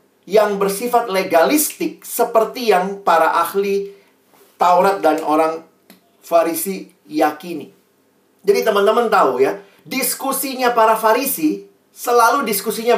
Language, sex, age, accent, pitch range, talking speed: Indonesian, male, 40-59, native, 170-240 Hz, 95 wpm